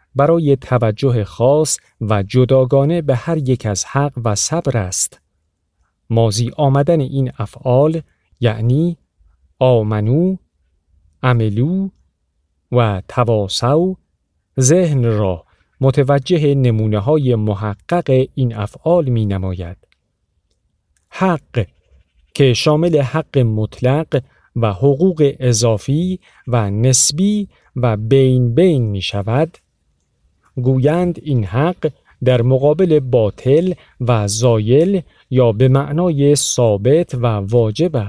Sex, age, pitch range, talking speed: male, 50-69, 110-145 Hz, 90 wpm